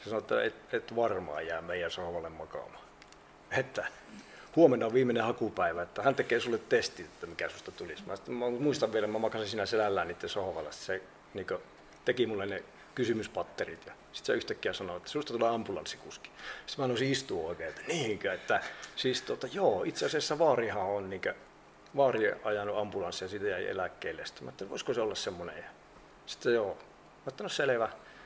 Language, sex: Finnish, male